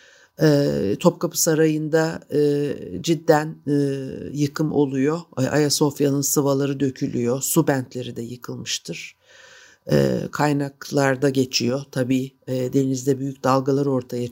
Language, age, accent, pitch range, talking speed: Turkish, 60-79, native, 135-160 Hz, 80 wpm